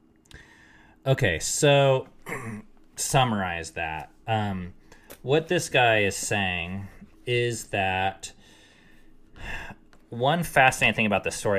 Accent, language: American, English